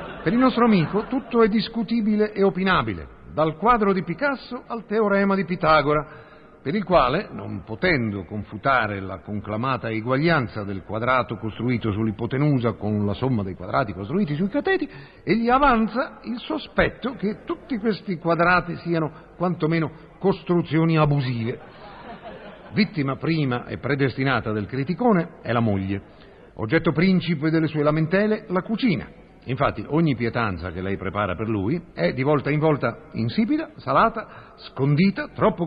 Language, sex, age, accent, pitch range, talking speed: Italian, male, 50-69, native, 115-195 Hz, 140 wpm